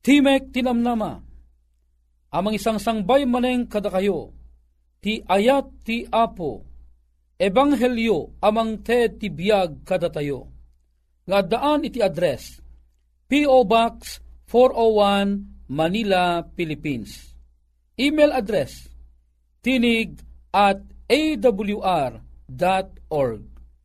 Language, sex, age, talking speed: Filipino, male, 40-59, 75 wpm